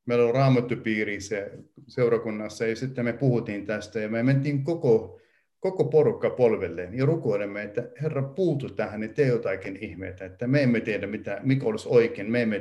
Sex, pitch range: male, 100-125 Hz